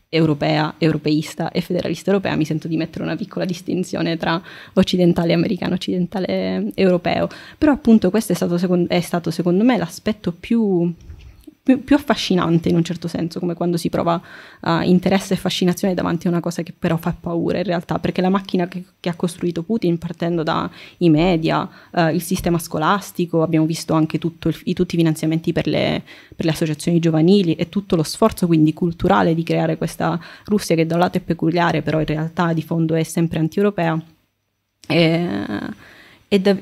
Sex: female